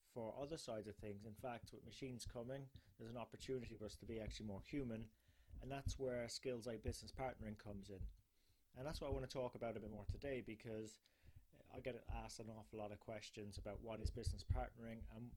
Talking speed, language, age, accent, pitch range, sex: 220 wpm, English, 30-49, British, 105-120 Hz, male